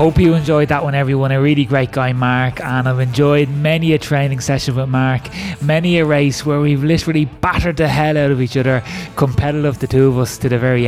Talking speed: 225 wpm